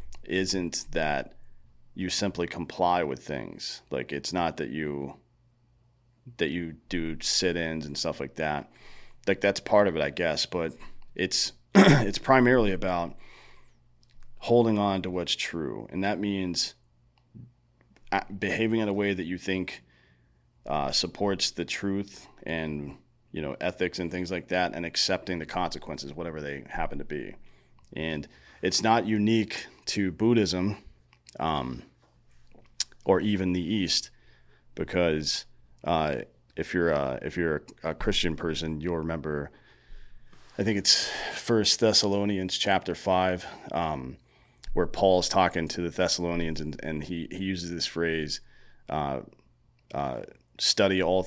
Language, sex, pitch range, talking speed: English, male, 75-95 Hz, 135 wpm